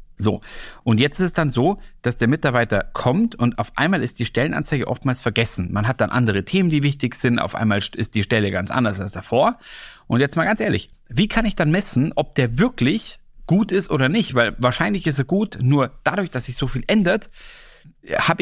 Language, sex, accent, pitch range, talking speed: German, male, German, 115-155 Hz, 215 wpm